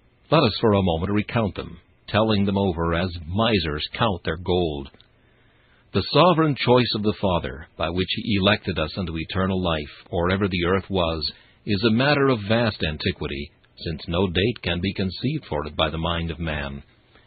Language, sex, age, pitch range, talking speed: English, male, 60-79, 85-115 Hz, 180 wpm